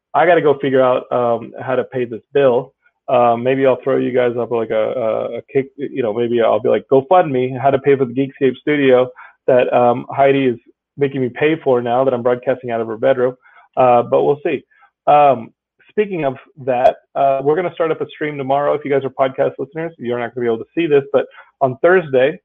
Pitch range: 125-180 Hz